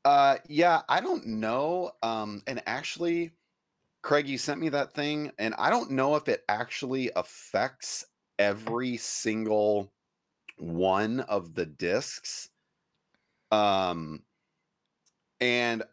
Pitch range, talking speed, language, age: 95-125 Hz, 115 wpm, English, 30-49